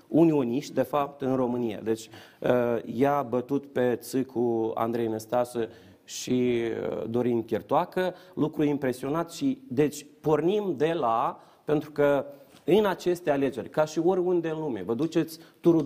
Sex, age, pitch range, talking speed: male, 30-49, 135-170 Hz, 140 wpm